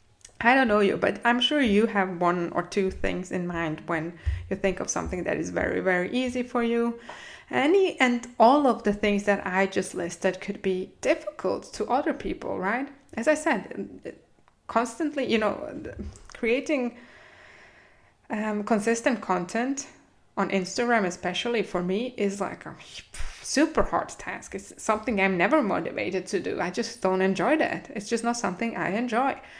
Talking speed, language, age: 170 wpm, English, 20-39